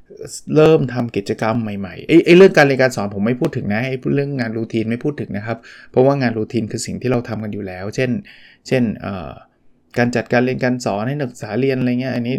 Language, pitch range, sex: Thai, 110-130 Hz, male